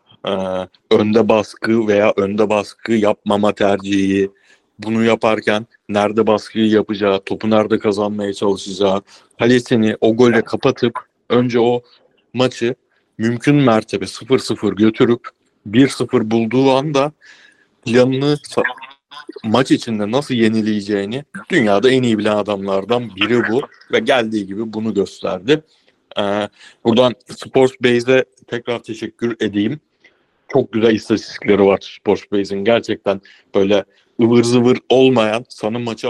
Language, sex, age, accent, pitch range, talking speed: Turkish, male, 60-79, native, 105-125 Hz, 110 wpm